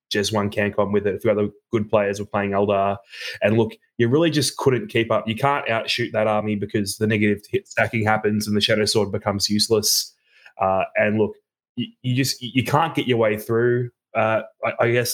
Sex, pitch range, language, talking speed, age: male, 105-120 Hz, English, 215 wpm, 20-39